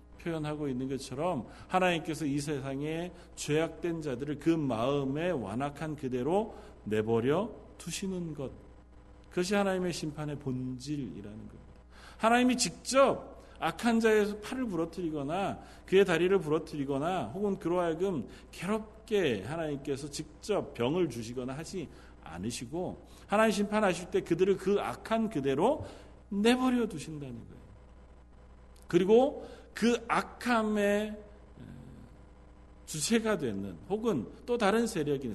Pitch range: 125-205 Hz